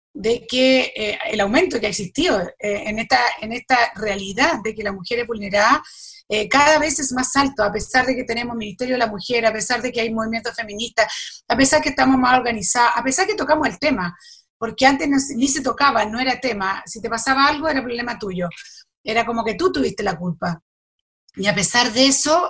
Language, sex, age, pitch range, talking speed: Spanish, female, 40-59, 210-255 Hz, 225 wpm